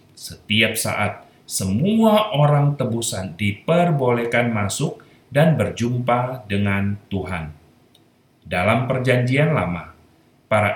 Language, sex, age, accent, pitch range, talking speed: Indonesian, male, 30-49, native, 100-150 Hz, 85 wpm